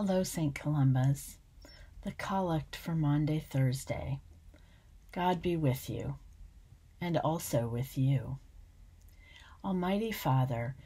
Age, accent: 50-69, American